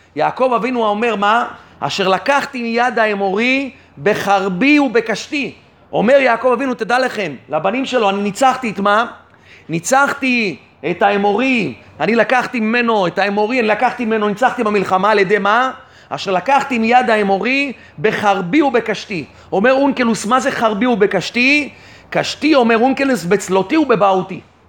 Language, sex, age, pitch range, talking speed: Hebrew, male, 30-49, 195-245 Hz, 130 wpm